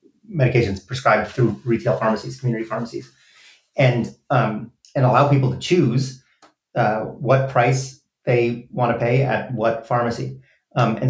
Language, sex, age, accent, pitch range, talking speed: English, male, 30-49, American, 110-130 Hz, 140 wpm